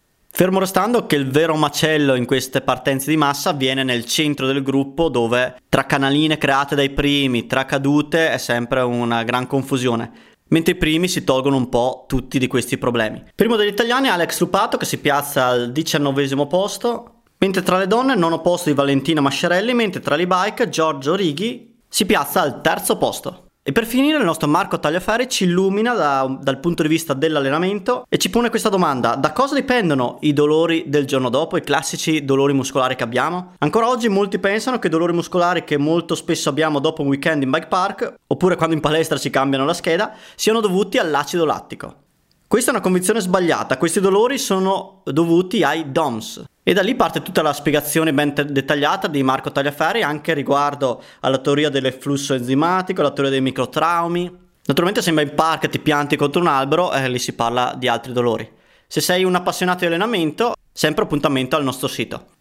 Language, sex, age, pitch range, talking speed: Italian, male, 20-39, 140-185 Hz, 190 wpm